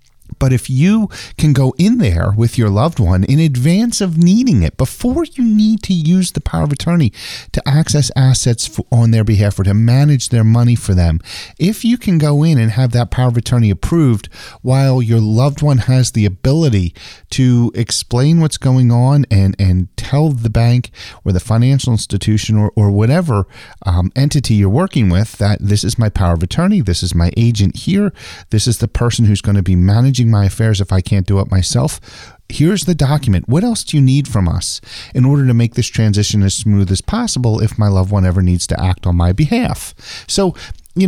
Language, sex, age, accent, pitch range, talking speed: English, male, 40-59, American, 100-135 Hz, 205 wpm